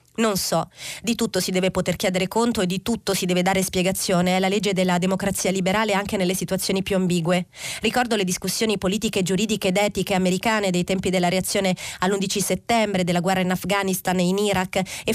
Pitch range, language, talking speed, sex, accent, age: 185-205 Hz, Italian, 195 wpm, female, native, 30-49